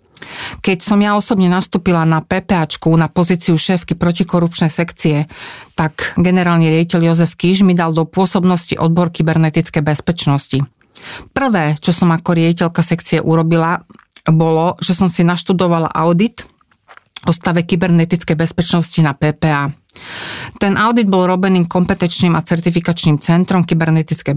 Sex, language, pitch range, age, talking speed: female, Slovak, 160-185 Hz, 40-59, 130 wpm